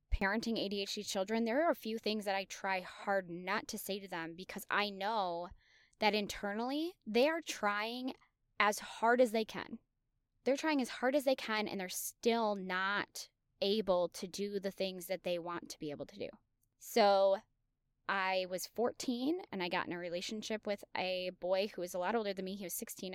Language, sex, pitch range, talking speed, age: English, female, 185-235 Hz, 200 wpm, 10-29